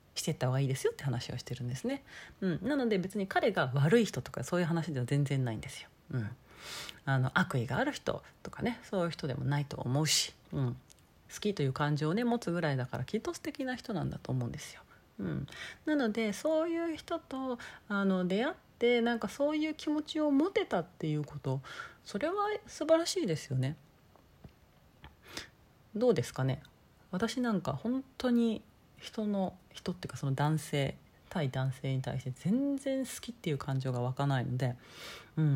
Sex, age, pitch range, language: female, 40-59, 135-230 Hz, Japanese